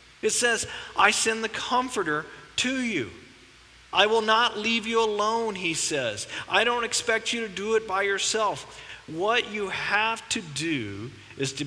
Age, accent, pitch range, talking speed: 40-59, American, 140-205 Hz, 165 wpm